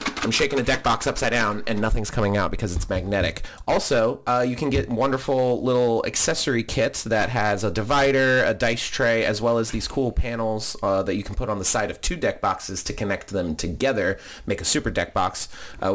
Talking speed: 220 wpm